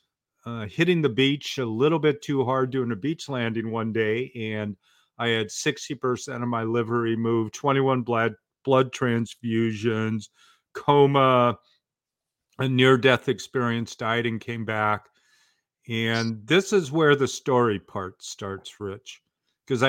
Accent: American